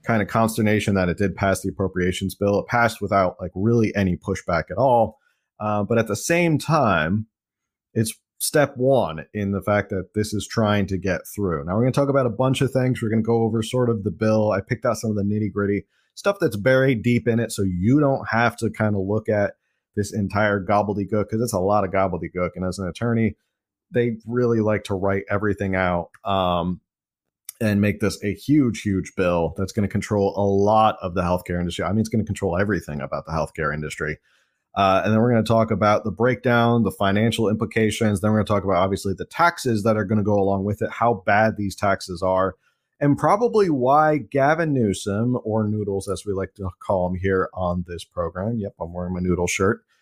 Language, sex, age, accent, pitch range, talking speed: English, male, 30-49, American, 95-115 Hz, 225 wpm